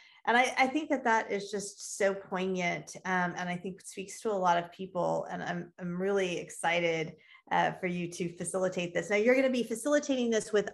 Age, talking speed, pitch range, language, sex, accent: 30-49, 225 wpm, 175-205 Hz, English, female, American